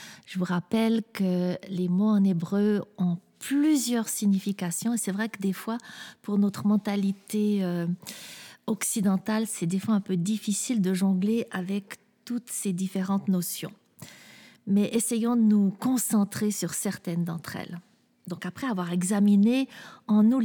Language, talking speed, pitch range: French, 145 wpm, 190-230 Hz